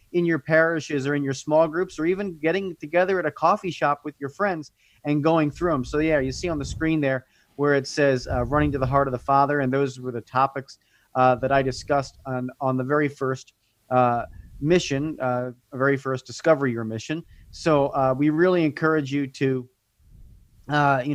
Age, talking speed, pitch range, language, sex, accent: 30-49, 205 wpm, 130-150 Hz, English, male, American